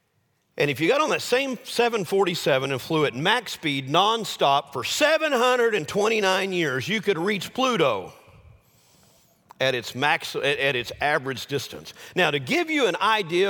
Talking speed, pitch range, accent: 140 wpm, 145-220 Hz, American